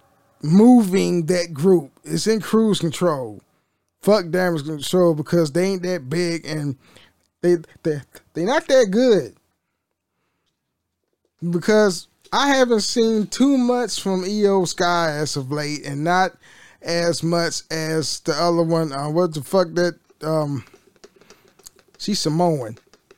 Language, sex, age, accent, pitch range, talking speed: English, male, 10-29, American, 155-200 Hz, 130 wpm